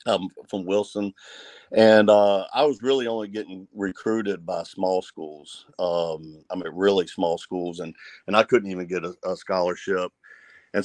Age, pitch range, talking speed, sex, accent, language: 50-69, 95-110 Hz, 165 wpm, male, American, English